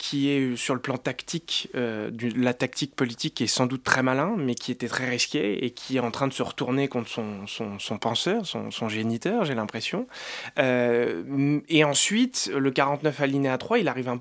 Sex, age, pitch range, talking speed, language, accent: male, 20-39, 125-160 Hz, 195 wpm, French, French